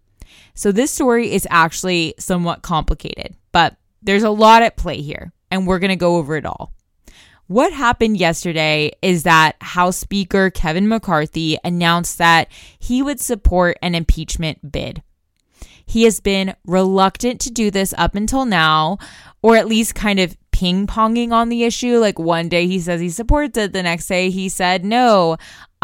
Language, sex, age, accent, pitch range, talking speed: English, female, 20-39, American, 170-215 Hz, 170 wpm